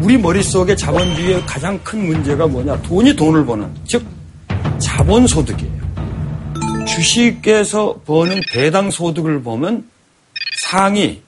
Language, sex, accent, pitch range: Korean, male, native, 110-170 Hz